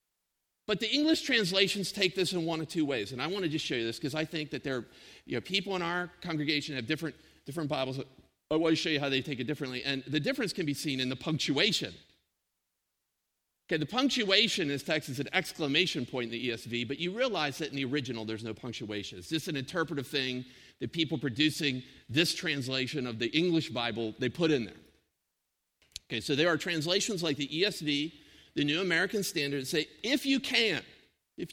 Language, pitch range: English, 145-210 Hz